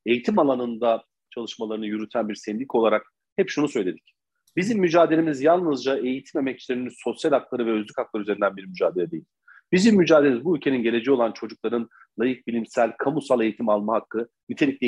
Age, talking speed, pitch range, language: 40-59, 155 wpm, 115-155 Hz, Turkish